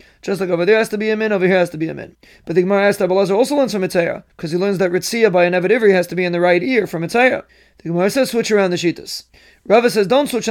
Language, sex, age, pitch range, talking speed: English, male, 30-49, 185-215 Hz, 295 wpm